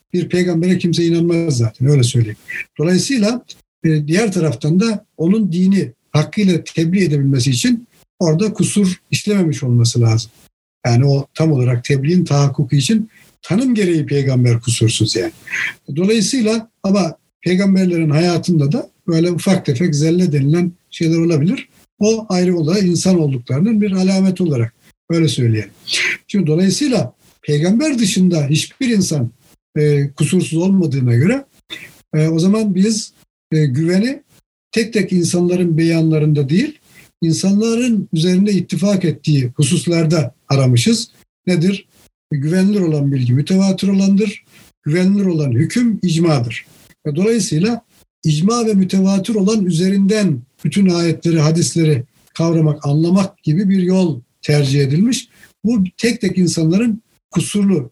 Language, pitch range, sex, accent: Turkish, 150-195 Hz, male, native